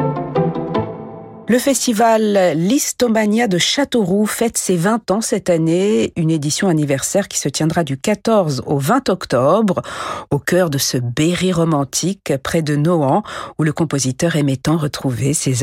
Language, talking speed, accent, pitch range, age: French, 145 wpm, French, 150-225 Hz, 50-69